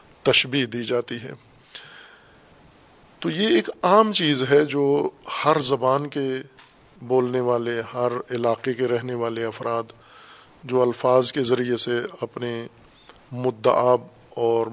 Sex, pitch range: male, 120-145 Hz